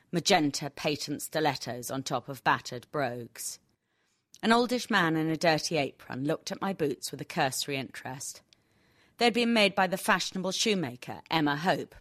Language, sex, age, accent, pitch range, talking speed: English, female, 40-59, British, 135-185 Hz, 165 wpm